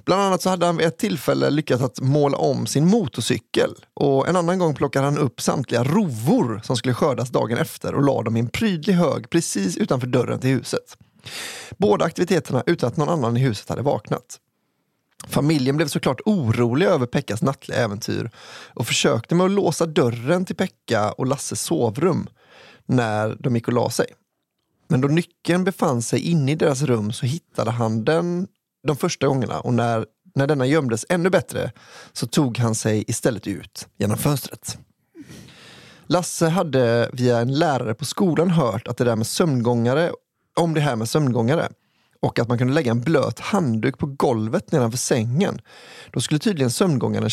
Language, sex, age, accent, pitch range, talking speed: English, male, 30-49, Swedish, 120-165 Hz, 175 wpm